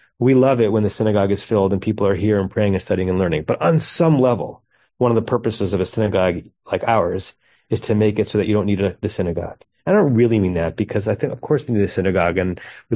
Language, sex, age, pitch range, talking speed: English, male, 30-49, 95-115 Hz, 275 wpm